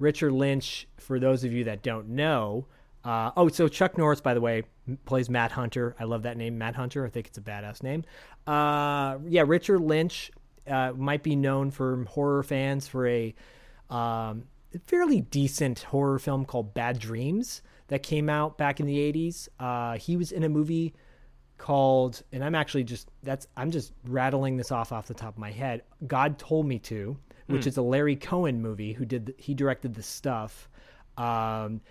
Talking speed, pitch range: 190 wpm, 120-145 Hz